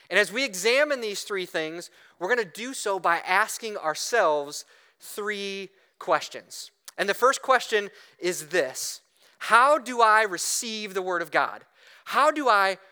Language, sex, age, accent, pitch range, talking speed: English, male, 30-49, American, 185-225 Hz, 160 wpm